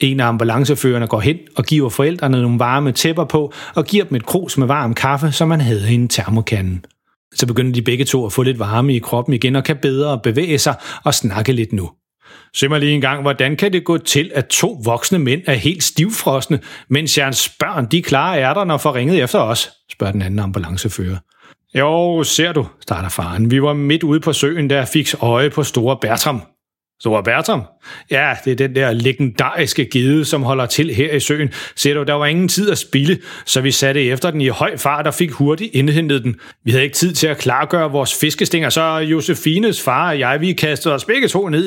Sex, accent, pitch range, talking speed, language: male, native, 120-150 Hz, 220 wpm, Danish